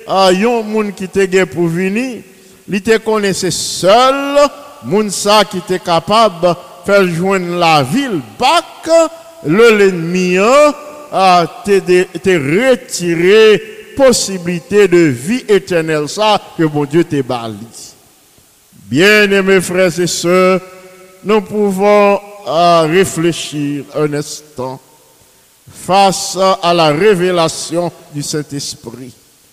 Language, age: English, 50-69